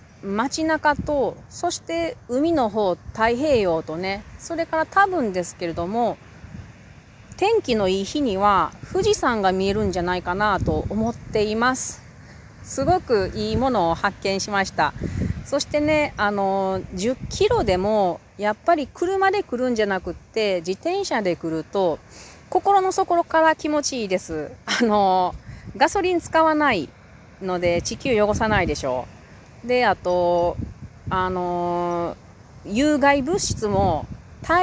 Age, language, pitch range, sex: 40-59, Japanese, 180-290 Hz, female